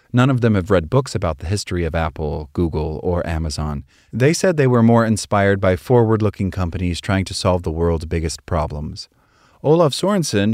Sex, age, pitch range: male, 30-49, 90-115 Hz